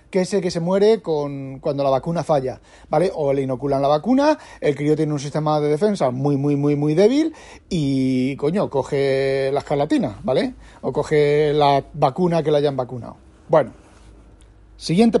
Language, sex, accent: Spanish, male, Spanish